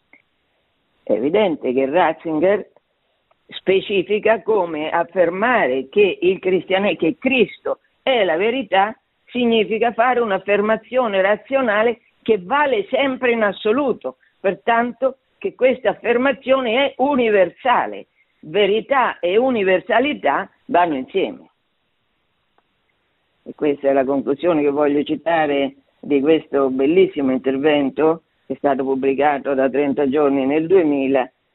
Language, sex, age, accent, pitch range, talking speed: Italian, female, 50-69, native, 155-255 Hz, 105 wpm